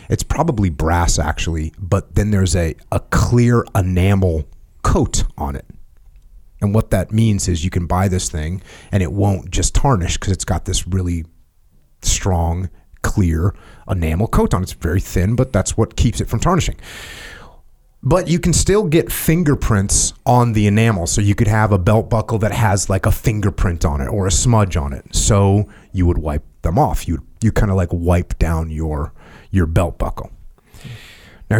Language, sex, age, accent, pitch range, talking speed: English, male, 30-49, American, 85-115 Hz, 180 wpm